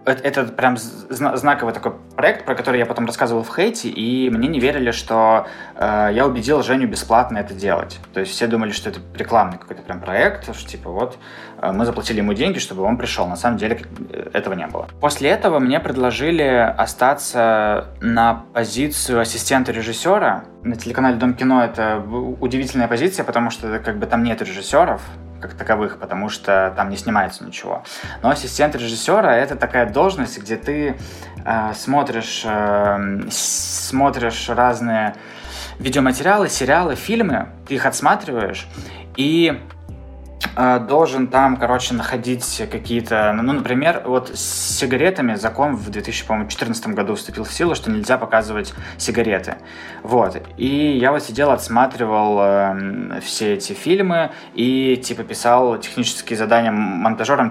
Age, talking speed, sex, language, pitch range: 20-39, 145 wpm, male, Russian, 105-130 Hz